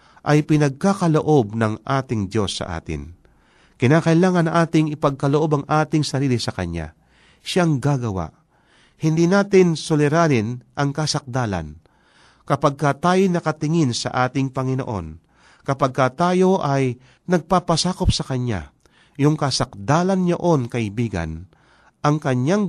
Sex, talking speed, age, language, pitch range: male, 110 wpm, 40-59, Filipino, 100-155 Hz